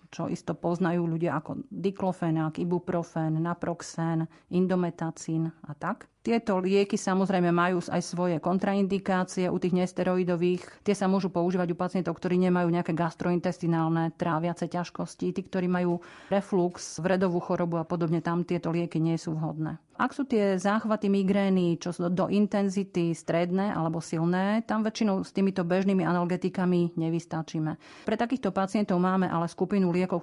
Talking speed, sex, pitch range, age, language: 145 wpm, female, 170-195 Hz, 40-59, Slovak